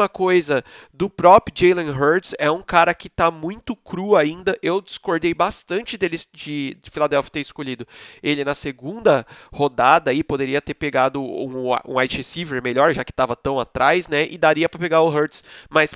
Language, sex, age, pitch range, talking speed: Portuguese, male, 30-49, 150-195 Hz, 180 wpm